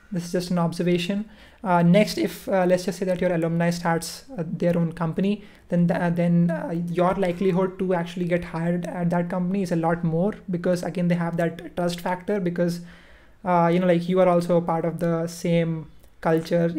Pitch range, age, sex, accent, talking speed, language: 170-185 Hz, 20-39, male, Indian, 205 wpm, English